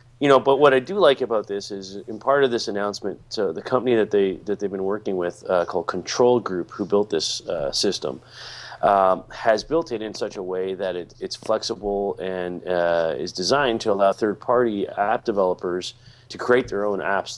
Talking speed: 215 wpm